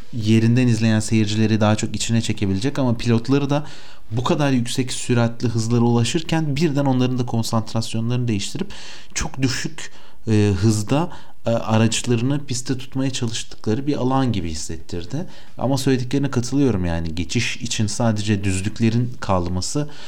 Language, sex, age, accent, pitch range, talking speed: Turkish, male, 40-59, native, 100-135 Hz, 130 wpm